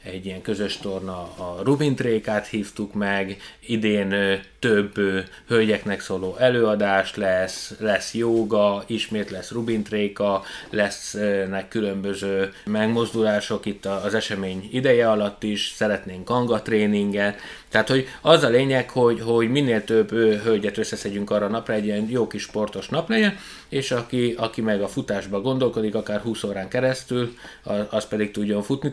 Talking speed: 135 wpm